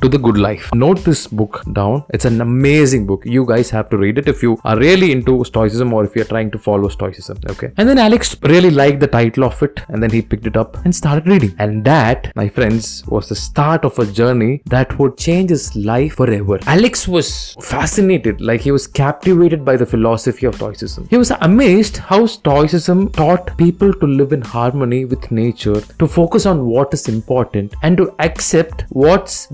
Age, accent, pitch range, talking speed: 20-39, native, 115-180 Hz, 205 wpm